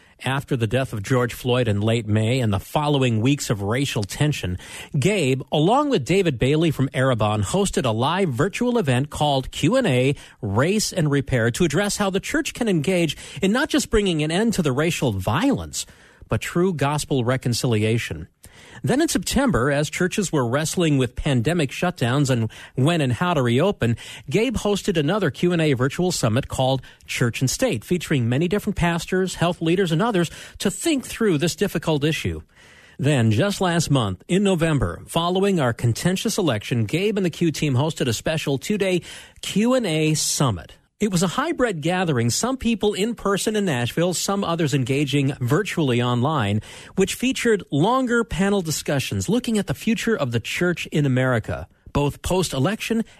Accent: American